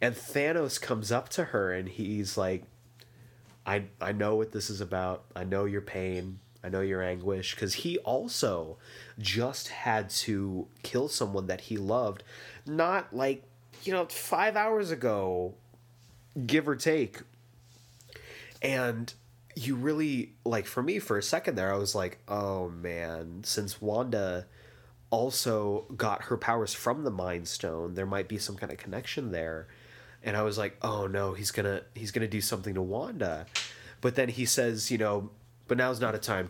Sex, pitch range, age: male, 100-125 Hz, 30-49